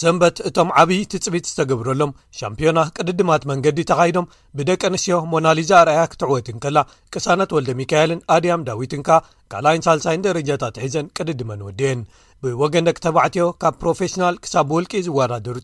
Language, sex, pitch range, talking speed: Amharic, male, 135-170 Hz, 130 wpm